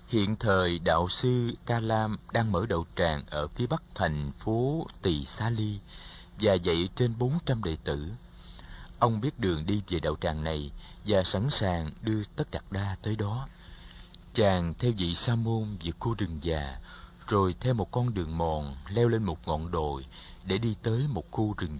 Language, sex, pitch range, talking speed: Vietnamese, male, 85-115 Hz, 185 wpm